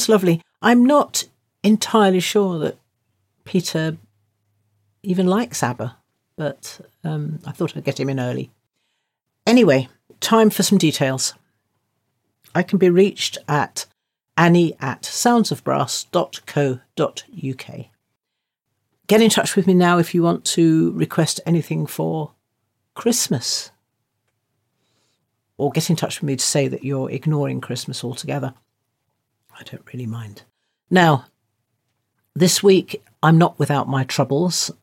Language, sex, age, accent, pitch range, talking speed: English, female, 50-69, British, 120-180 Hz, 120 wpm